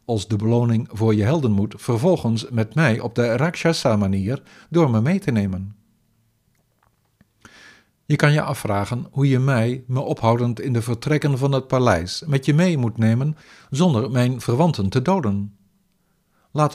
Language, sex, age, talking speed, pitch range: Dutch, male, 50-69, 160 wpm, 110-150 Hz